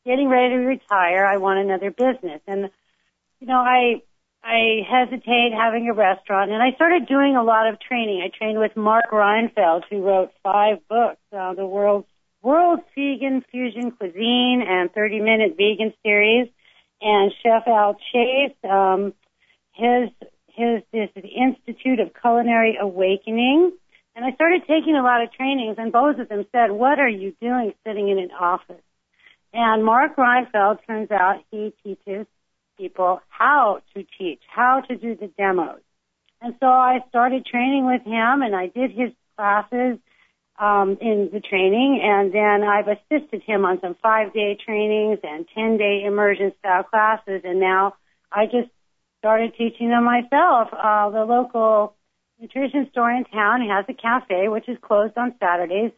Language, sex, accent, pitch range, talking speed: English, female, American, 200-245 Hz, 155 wpm